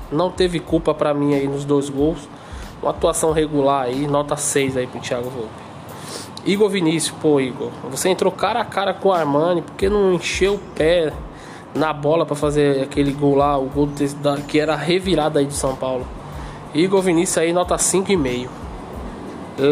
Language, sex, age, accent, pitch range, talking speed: Portuguese, male, 20-39, Brazilian, 145-175 Hz, 175 wpm